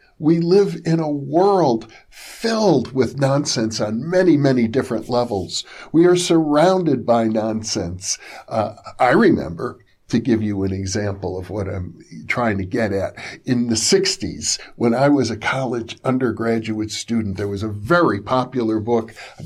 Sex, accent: male, American